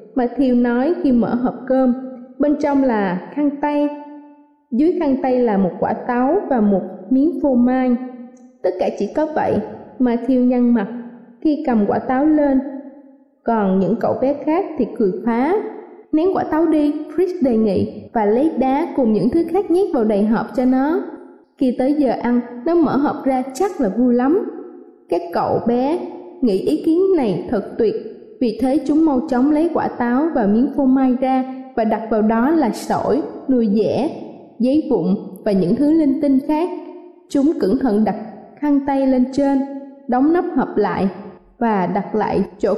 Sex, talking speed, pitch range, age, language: female, 180 wpm, 235-295 Hz, 20-39, Vietnamese